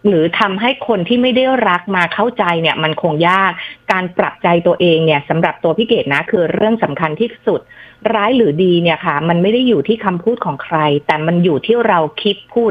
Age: 30-49